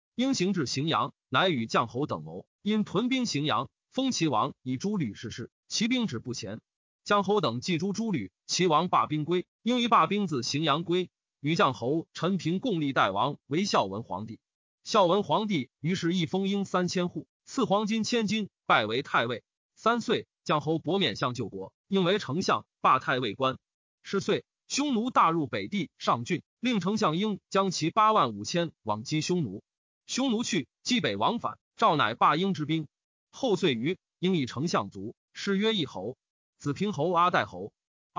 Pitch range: 155-215 Hz